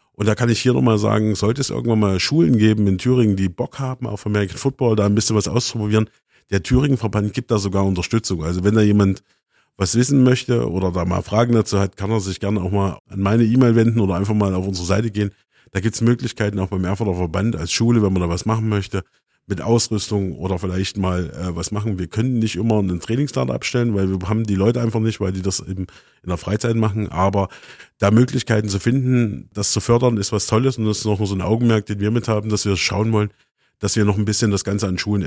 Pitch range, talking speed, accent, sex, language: 95-115 Hz, 245 wpm, German, male, German